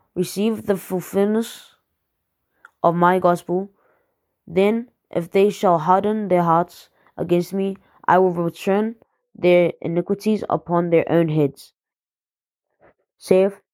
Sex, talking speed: female, 110 wpm